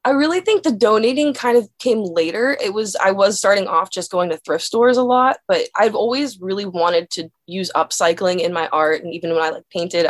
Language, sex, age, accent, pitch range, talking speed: English, female, 20-39, American, 160-230 Hz, 230 wpm